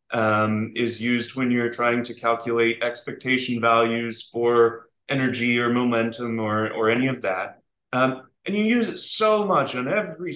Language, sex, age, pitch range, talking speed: English, male, 30-49, 120-175 Hz, 160 wpm